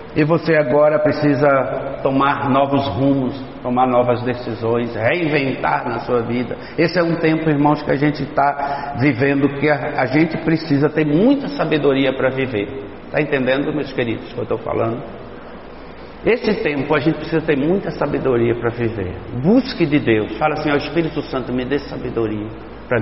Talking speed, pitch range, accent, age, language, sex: 170 wpm, 130-200 Hz, Brazilian, 60-79, Portuguese, male